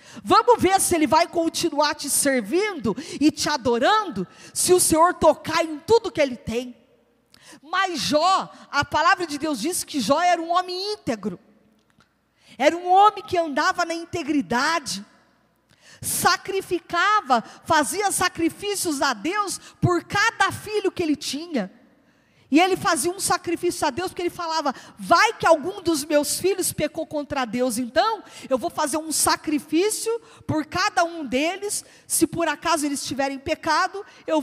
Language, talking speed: Portuguese, 150 wpm